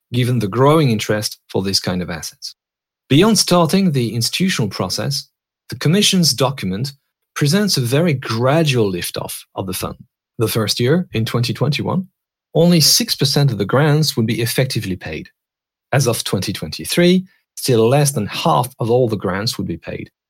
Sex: male